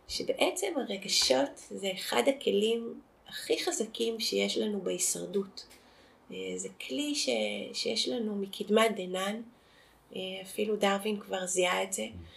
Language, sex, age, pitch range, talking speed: Hebrew, female, 30-49, 195-270 Hz, 110 wpm